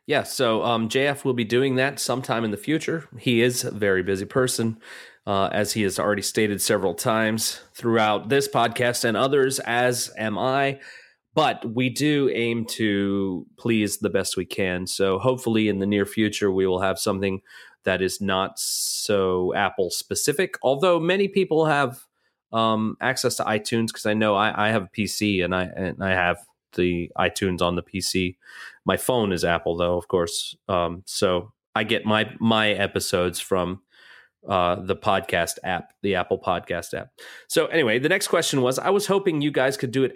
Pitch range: 95-125 Hz